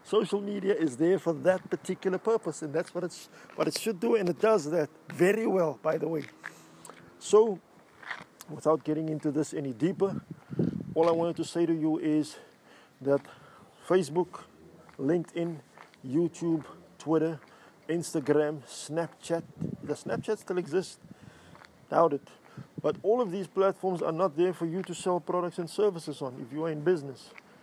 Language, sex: English, male